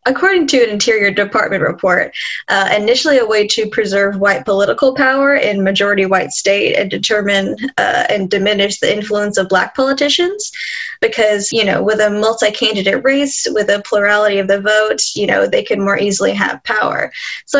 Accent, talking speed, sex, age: American, 175 wpm, female, 10-29